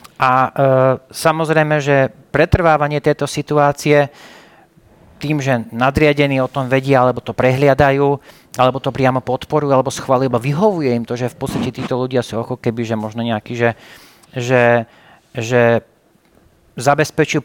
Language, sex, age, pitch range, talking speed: Slovak, male, 40-59, 130-150 Hz, 140 wpm